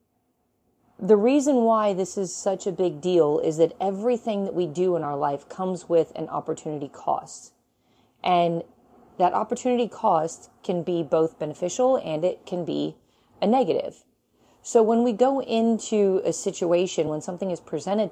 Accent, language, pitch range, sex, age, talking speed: American, English, 155-200 Hz, female, 30-49, 160 wpm